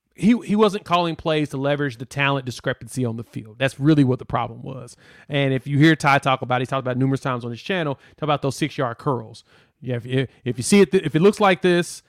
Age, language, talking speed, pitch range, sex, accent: 30-49, English, 265 wpm, 130-165 Hz, male, American